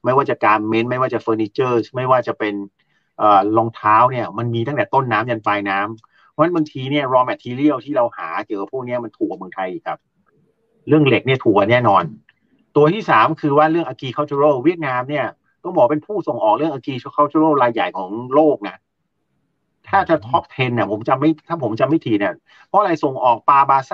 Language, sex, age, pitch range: Thai, male, 30-49, 125-165 Hz